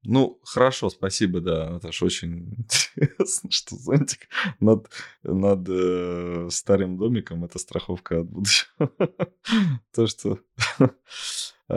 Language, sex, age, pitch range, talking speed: Russian, male, 20-39, 90-110 Hz, 95 wpm